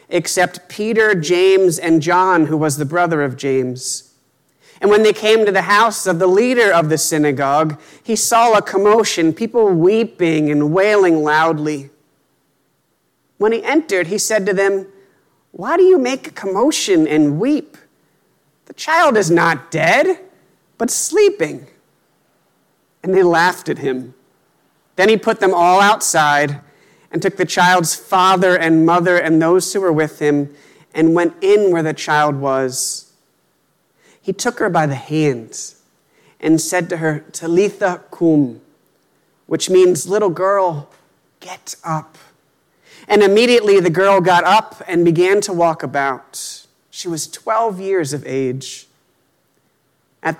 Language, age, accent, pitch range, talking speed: English, 40-59, American, 150-200 Hz, 145 wpm